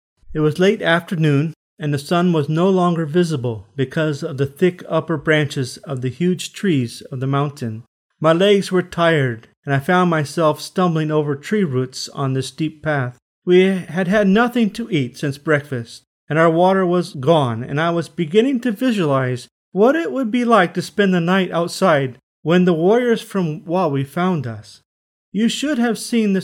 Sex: male